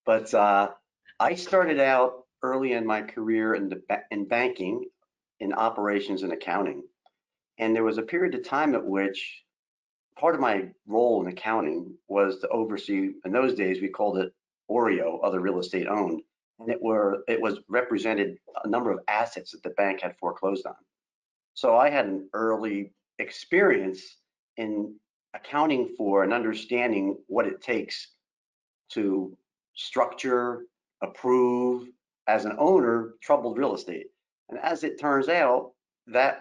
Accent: American